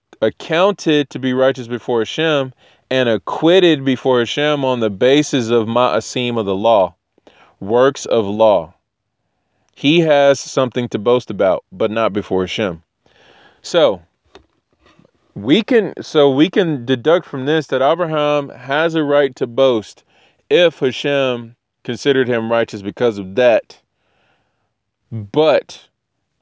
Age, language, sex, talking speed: 20-39, English, male, 125 wpm